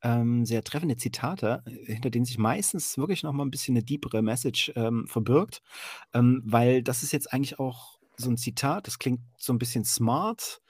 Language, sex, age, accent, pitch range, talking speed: German, male, 30-49, German, 110-135 Hz, 180 wpm